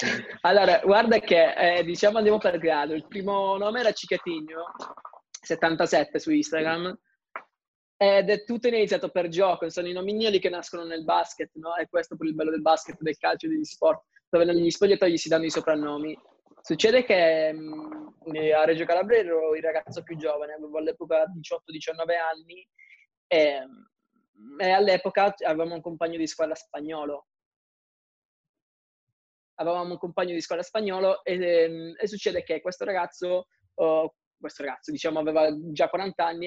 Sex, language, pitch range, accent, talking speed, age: male, Italian, 160-200 Hz, native, 160 wpm, 20-39